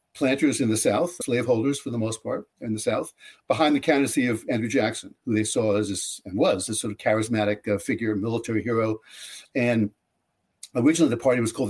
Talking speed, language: 195 wpm, English